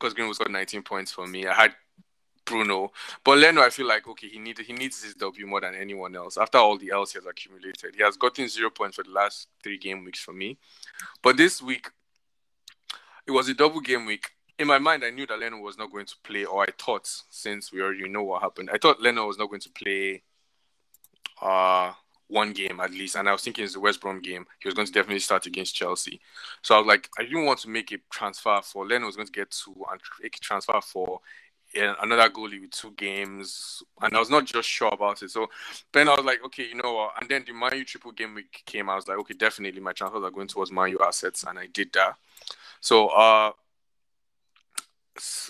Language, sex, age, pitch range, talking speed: English, male, 20-39, 95-120 Hz, 230 wpm